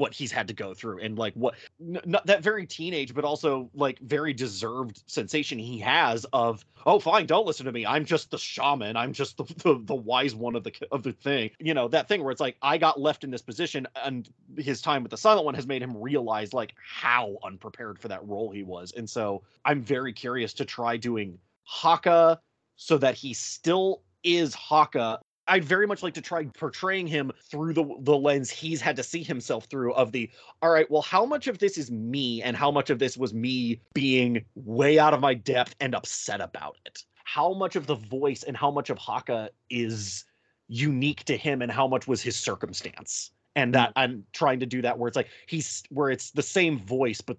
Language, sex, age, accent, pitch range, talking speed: English, male, 30-49, American, 120-155 Hz, 220 wpm